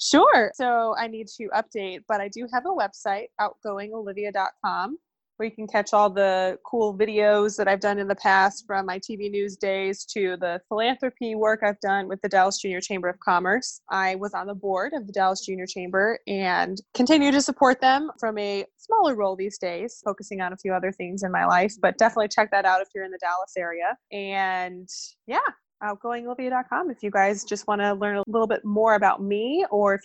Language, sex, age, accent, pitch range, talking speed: English, female, 20-39, American, 190-220 Hz, 210 wpm